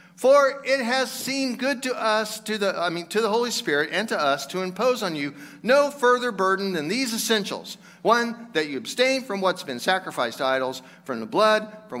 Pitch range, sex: 145-215 Hz, male